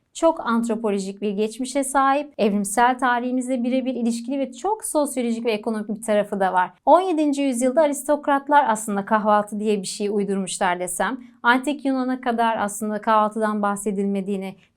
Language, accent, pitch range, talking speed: Turkish, native, 210-265 Hz, 140 wpm